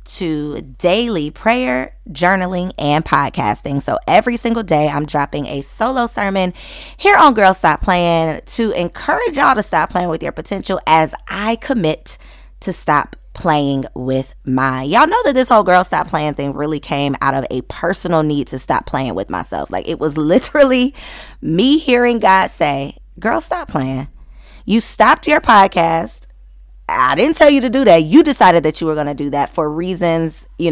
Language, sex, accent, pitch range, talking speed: English, female, American, 145-210 Hz, 180 wpm